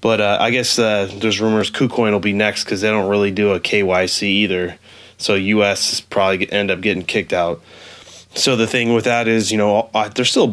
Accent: American